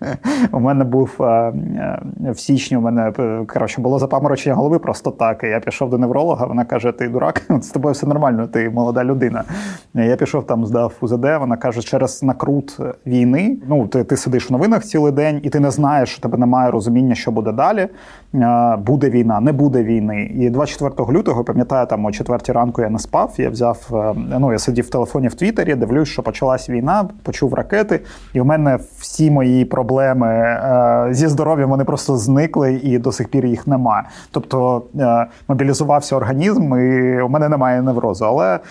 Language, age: Ukrainian, 30-49